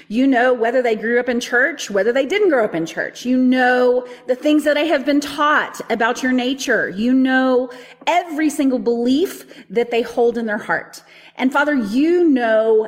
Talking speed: 195 wpm